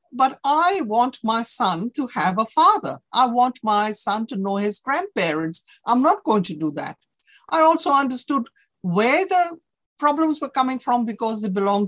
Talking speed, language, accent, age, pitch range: 175 wpm, English, Indian, 50-69, 190-260 Hz